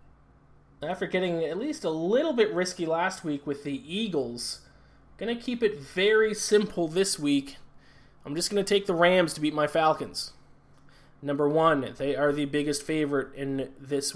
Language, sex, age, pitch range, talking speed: English, male, 20-39, 135-160 Hz, 165 wpm